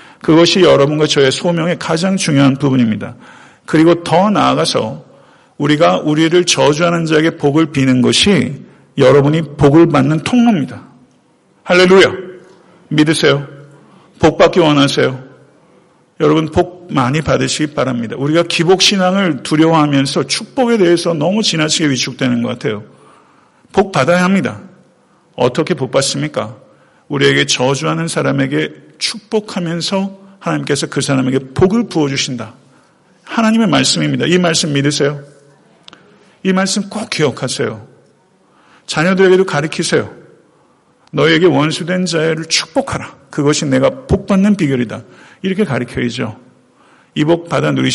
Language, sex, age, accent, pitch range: Korean, male, 50-69, native, 135-175 Hz